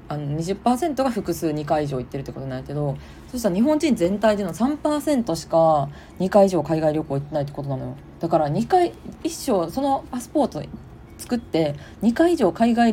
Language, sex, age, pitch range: Japanese, female, 20-39, 145-220 Hz